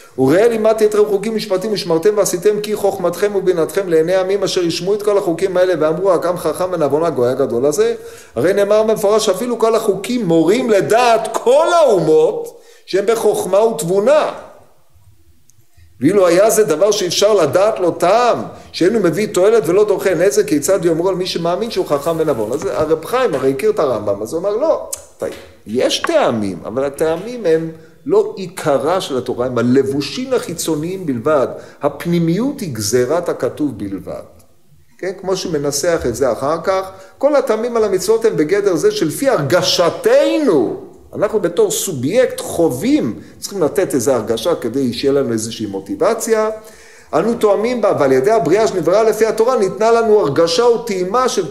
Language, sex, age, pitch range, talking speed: Hebrew, male, 50-69, 155-225 Hz, 155 wpm